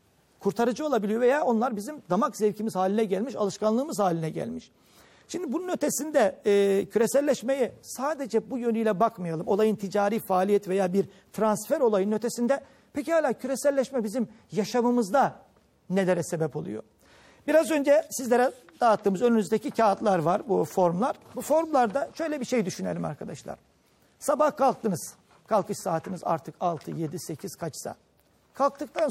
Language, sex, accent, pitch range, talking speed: Turkish, male, native, 185-245 Hz, 130 wpm